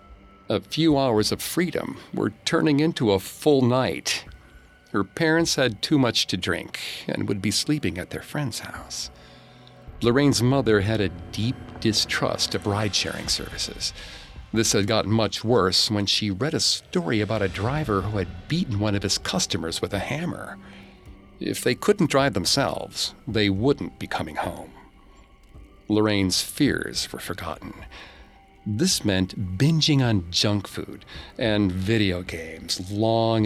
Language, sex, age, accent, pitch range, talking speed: English, male, 50-69, American, 95-130 Hz, 145 wpm